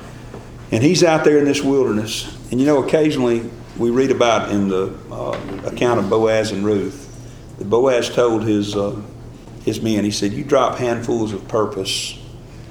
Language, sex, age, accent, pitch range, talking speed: English, male, 40-59, American, 105-125 Hz, 170 wpm